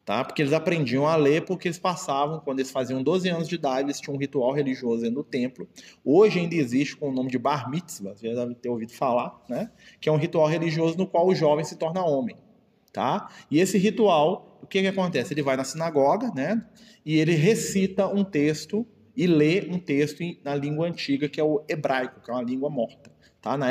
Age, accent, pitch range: 20-39, Brazilian, 145-190 Hz